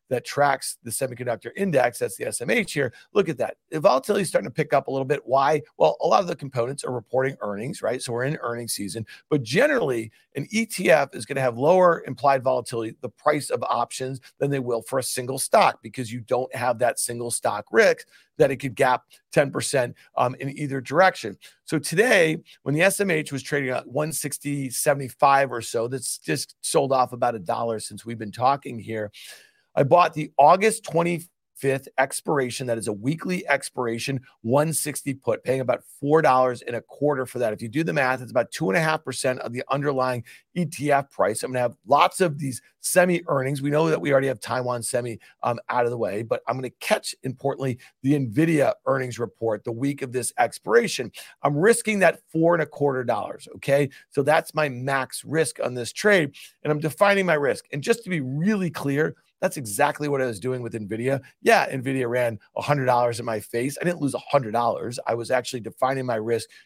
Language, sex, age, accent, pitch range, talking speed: English, male, 40-59, American, 120-150 Hz, 205 wpm